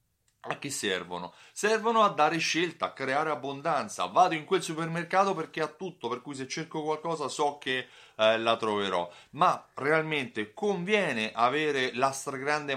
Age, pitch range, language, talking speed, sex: 30-49, 105-155 Hz, Italian, 155 wpm, male